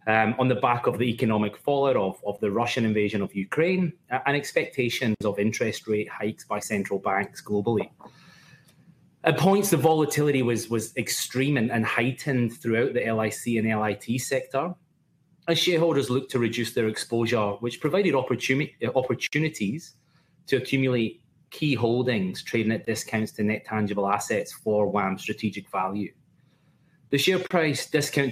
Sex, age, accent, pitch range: male, 30-49, British, 110-150 Hz